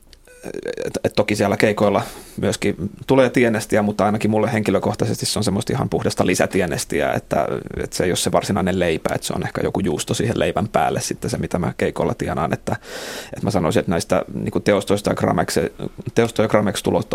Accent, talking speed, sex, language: native, 180 wpm, male, Finnish